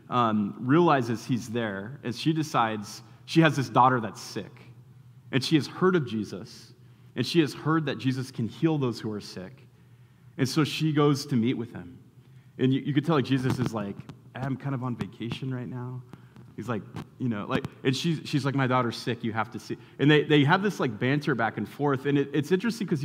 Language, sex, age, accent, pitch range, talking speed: English, male, 30-49, American, 125-155 Hz, 220 wpm